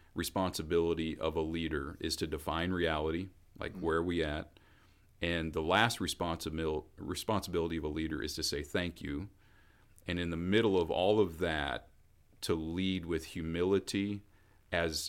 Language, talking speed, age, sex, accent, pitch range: English, 155 wpm, 40-59, male, American, 80-95 Hz